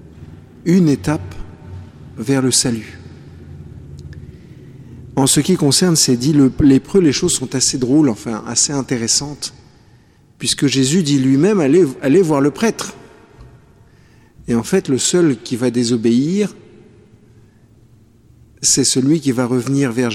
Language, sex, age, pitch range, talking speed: French, male, 50-69, 115-145 Hz, 130 wpm